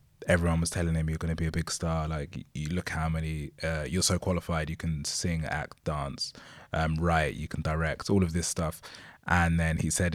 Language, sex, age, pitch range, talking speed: English, male, 20-39, 80-85 Hz, 225 wpm